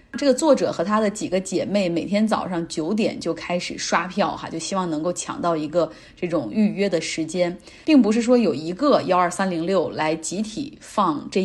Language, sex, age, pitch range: Chinese, female, 30-49, 170-235 Hz